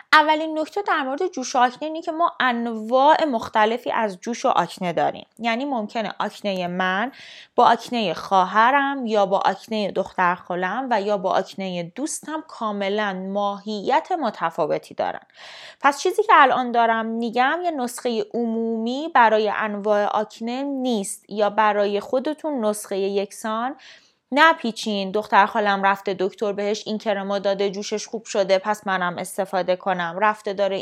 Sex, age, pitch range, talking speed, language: female, 20-39, 195-265 Hz, 145 wpm, Persian